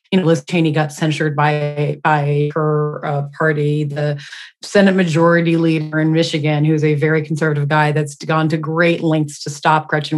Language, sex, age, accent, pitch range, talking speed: English, female, 30-49, American, 155-180 Hz, 175 wpm